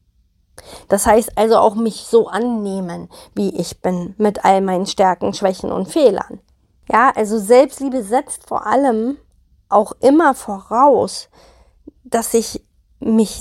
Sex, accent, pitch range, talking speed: female, German, 215-260 Hz, 130 wpm